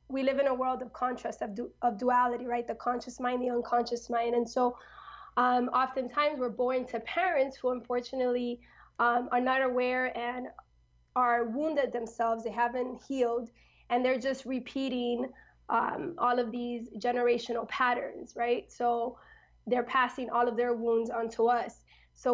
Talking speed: 160 wpm